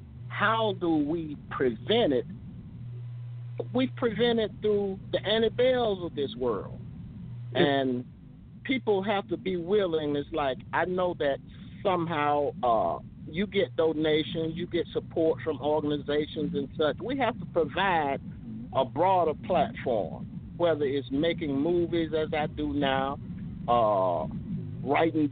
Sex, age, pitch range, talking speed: male, 50-69, 140-180 Hz, 130 wpm